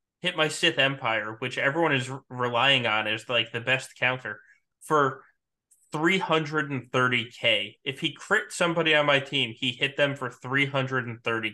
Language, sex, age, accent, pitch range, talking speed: English, male, 20-39, American, 120-150 Hz, 150 wpm